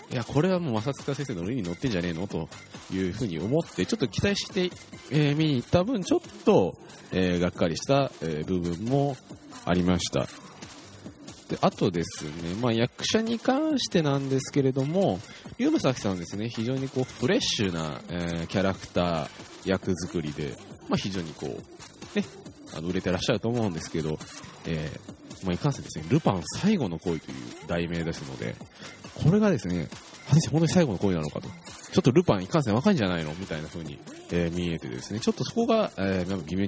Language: Japanese